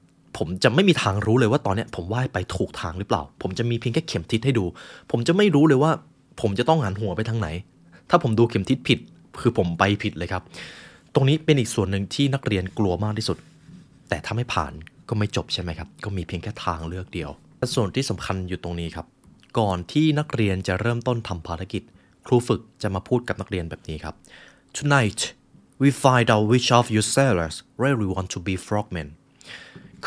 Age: 20-39